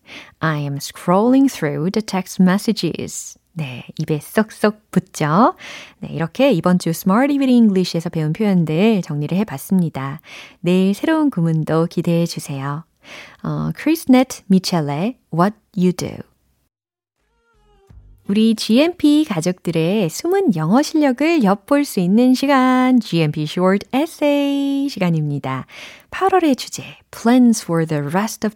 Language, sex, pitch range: Korean, female, 160-225 Hz